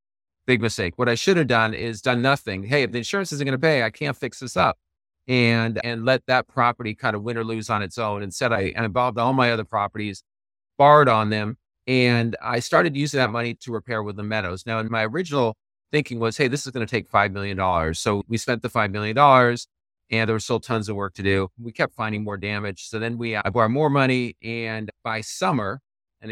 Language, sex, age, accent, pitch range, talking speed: English, male, 40-59, American, 100-125 Hz, 230 wpm